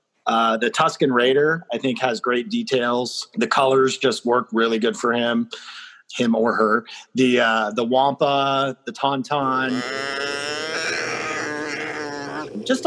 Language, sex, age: English, male, 30-49